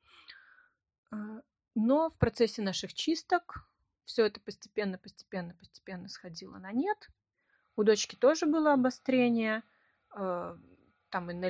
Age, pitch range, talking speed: 30-49, 190-275 Hz, 100 wpm